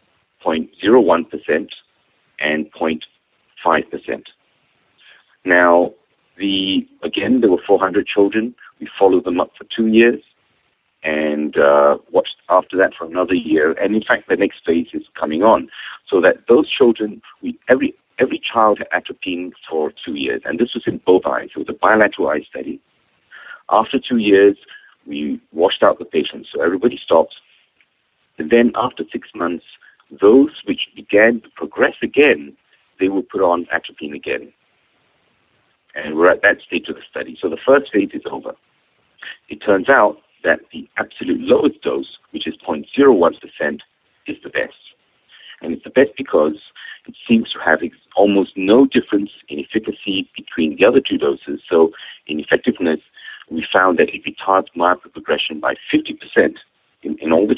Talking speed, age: 155 wpm, 50-69